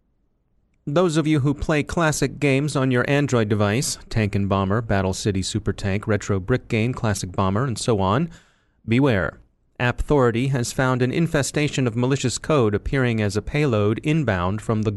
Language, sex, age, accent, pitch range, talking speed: English, male, 30-49, American, 115-145 Hz, 170 wpm